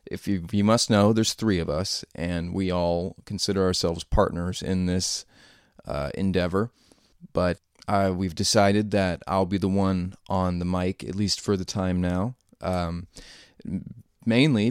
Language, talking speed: English, 155 wpm